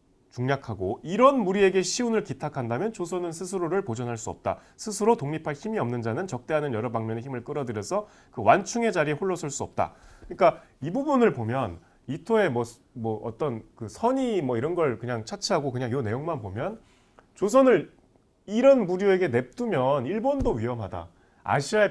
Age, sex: 30-49, male